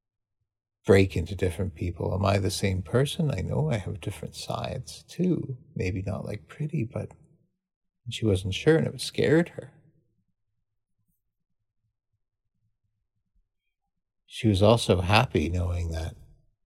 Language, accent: English, American